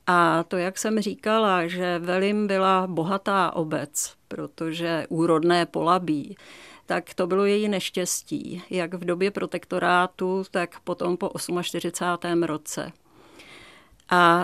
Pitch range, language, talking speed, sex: 175-200 Hz, Czech, 115 wpm, female